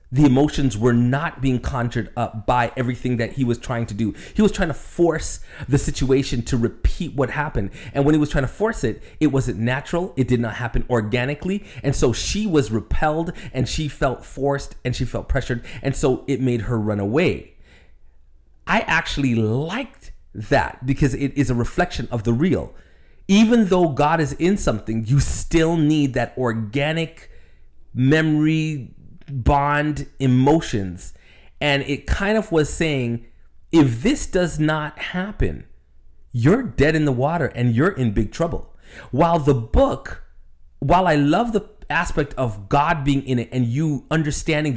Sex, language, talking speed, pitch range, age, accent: male, English, 170 wpm, 120-155 Hz, 30-49, American